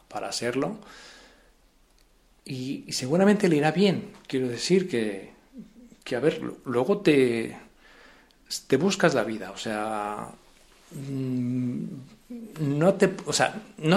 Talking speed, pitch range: 100 wpm, 110-150 Hz